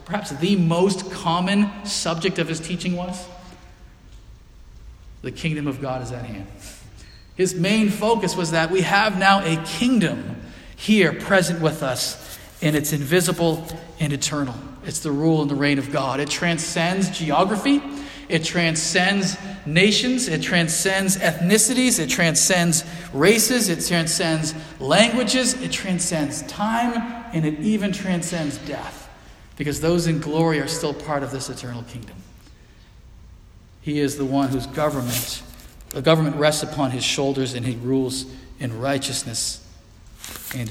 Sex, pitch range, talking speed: male, 135-180 Hz, 140 wpm